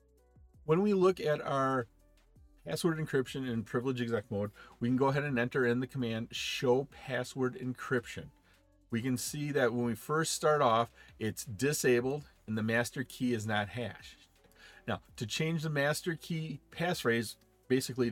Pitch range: 110-140 Hz